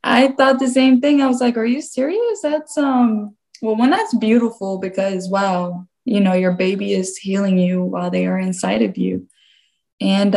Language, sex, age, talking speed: English, female, 20-39, 190 wpm